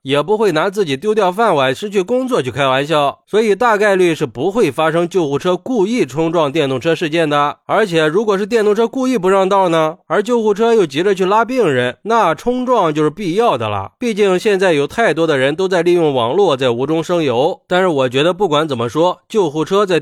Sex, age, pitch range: male, 20-39, 150-215 Hz